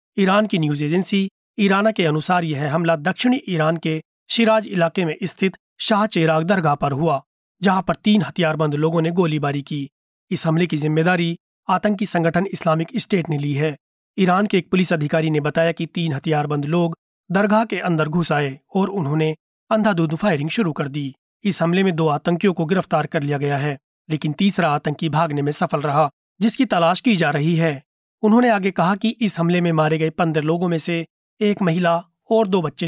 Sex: male